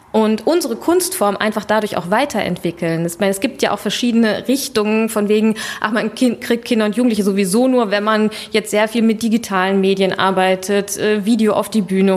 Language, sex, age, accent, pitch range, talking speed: German, female, 20-39, German, 210-255 Hz, 185 wpm